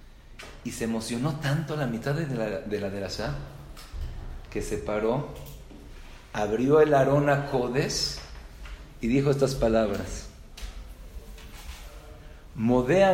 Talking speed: 115 wpm